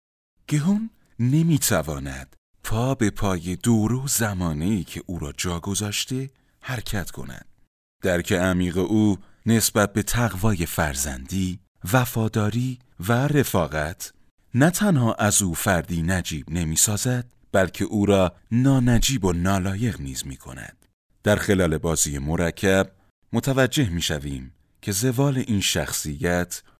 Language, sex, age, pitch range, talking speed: Persian, male, 30-49, 85-115 Hz, 115 wpm